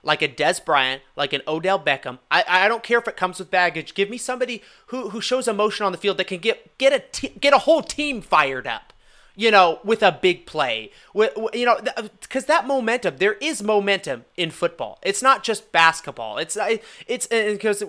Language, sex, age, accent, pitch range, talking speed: English, male, 30-49, American, 165-245 Hz, 210 wpm